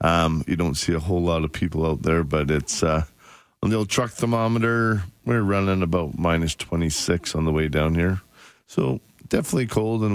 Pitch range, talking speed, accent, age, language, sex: 85-105 Hz, 190 wpm, American, 40-59, English, male